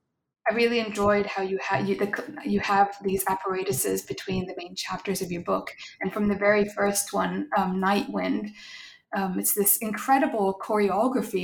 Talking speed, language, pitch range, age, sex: 165 wpm, English, 185-205 Hz, 20-39, female